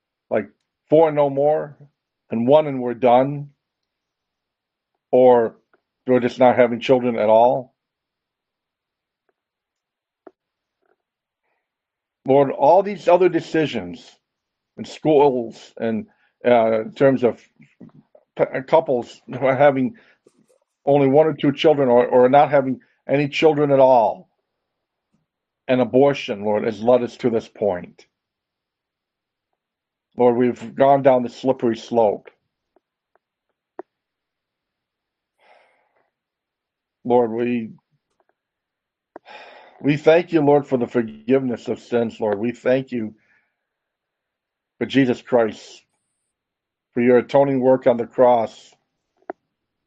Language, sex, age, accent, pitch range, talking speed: English, male, 50-69, American, 120-140 Hz, 105 wpm